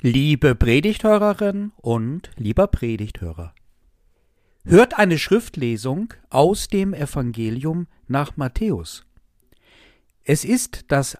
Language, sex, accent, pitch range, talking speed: German, male, German, 115-175 Hz, 85 wpm